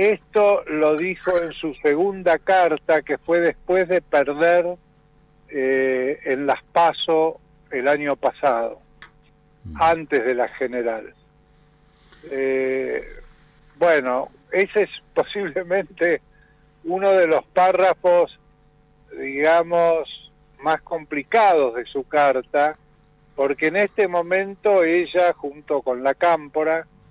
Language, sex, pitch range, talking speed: Spanish, male, 130-165 Hz, 105 wpm